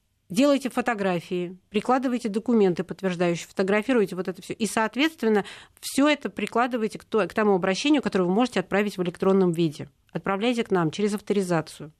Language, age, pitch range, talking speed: Russian, 40-59, 175-220 Hz, 145 wpm